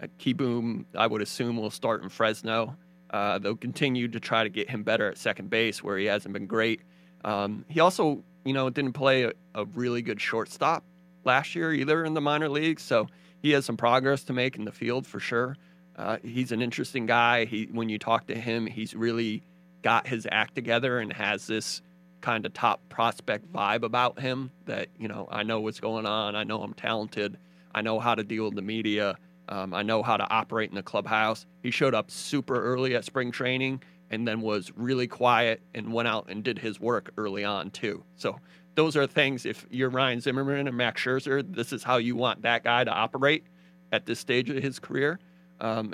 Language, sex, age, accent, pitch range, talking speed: English, male, 30-49, American, 110-135 Hz, 215 wpm